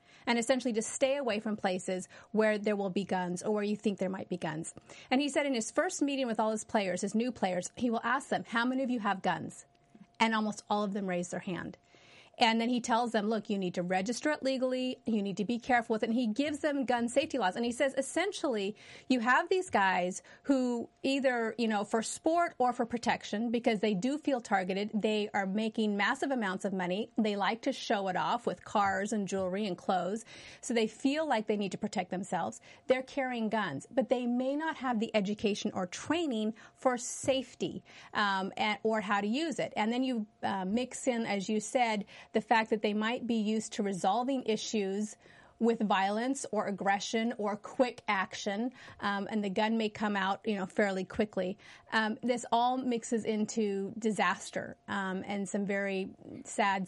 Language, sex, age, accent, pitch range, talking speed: English, female, 30-49, American, 200-250 Hz, 205 wpm